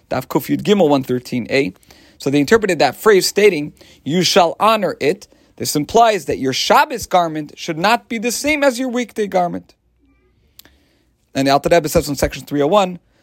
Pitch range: 140-210 Hz